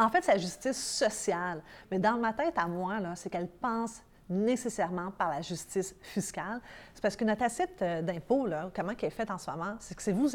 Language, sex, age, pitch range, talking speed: French, female, 30-49, 180-230 Hz, 225 wpm